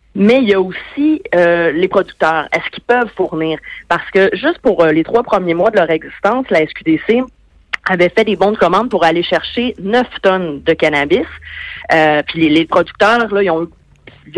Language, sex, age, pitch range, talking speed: French, female, 30-49, 170-230 Hz, 205 wpm